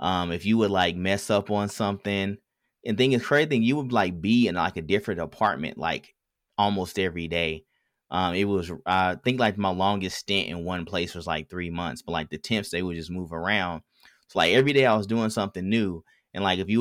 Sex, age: male, 20-39